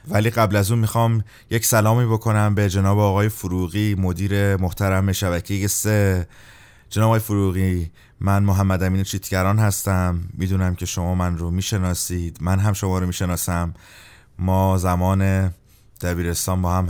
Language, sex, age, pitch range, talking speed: Persian, male, 30-49, 90-105 Hz, 140 wpm